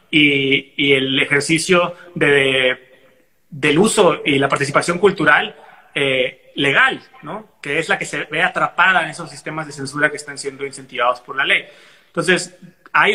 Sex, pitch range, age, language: male, 145-170 Hz, 30-49, Spanish